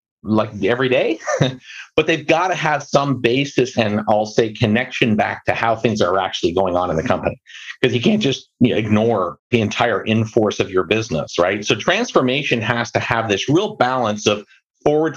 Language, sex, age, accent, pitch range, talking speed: English, male, 50-69, American, 110-135 Hz, 190 wpm